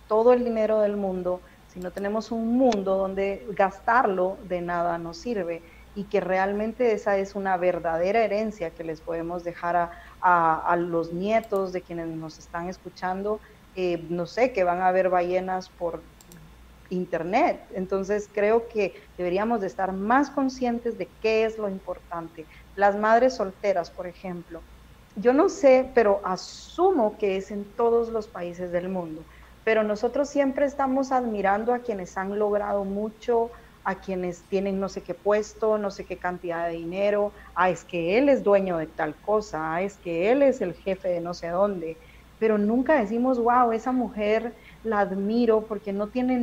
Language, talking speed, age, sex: Spanish, 170 wpm, 40-59, female